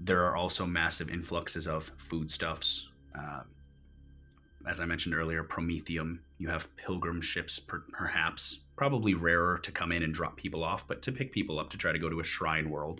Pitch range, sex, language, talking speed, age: 80-100 Hz, male, English, 190 wpm, 30-49